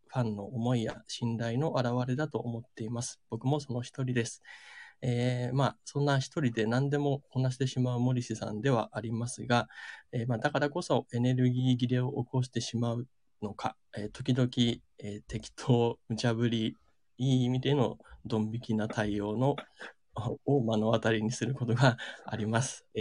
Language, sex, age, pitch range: Japanese, male, 20-39, 110-130 Hz